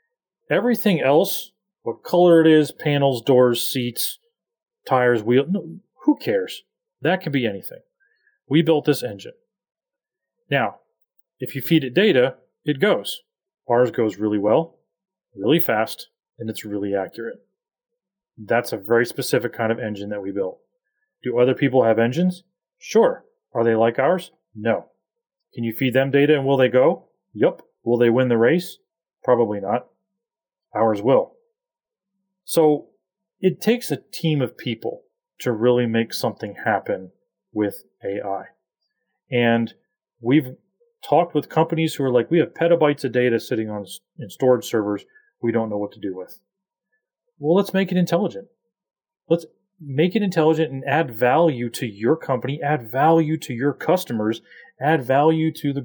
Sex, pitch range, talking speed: male, 125-195 Hz, 155 wpm